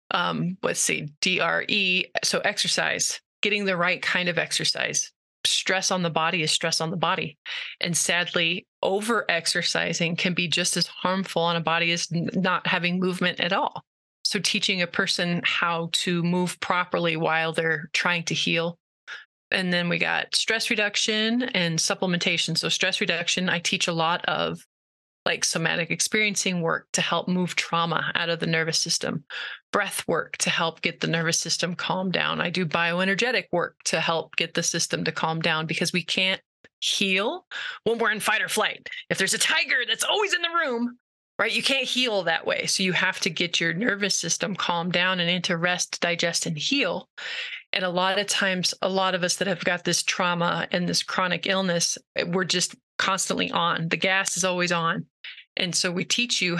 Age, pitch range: 30-49, 170-195 Hz